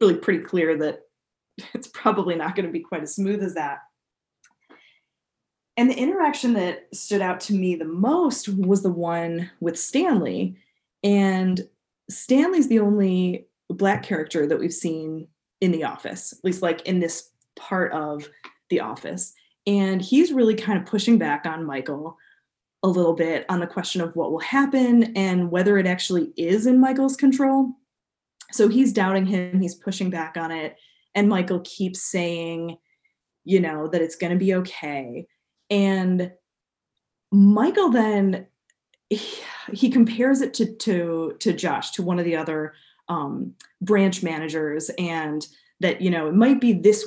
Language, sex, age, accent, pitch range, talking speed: English, female, 20-39, American, 165-210 Hz, 160 wpm